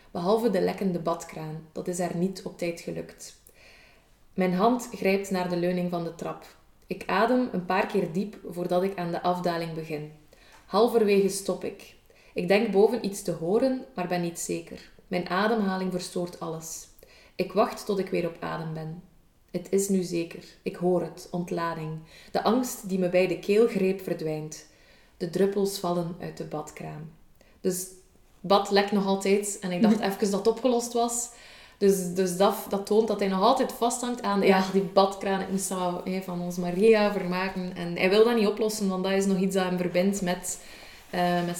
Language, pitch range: Dutch, 180-210 Hz